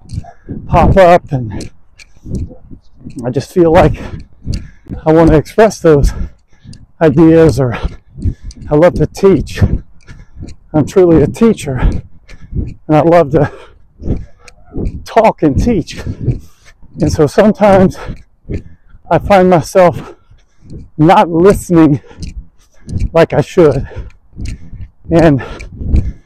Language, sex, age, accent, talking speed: English, male, 50-69, American, 95 wpm